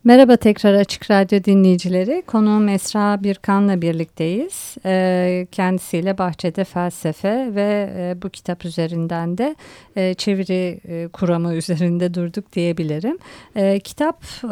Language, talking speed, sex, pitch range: Turkish, 95 wpm, female, 180-205 Hz